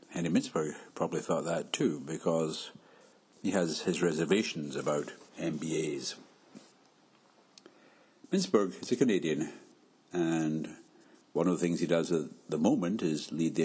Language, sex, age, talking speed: English, male, 60-79, 130 wpm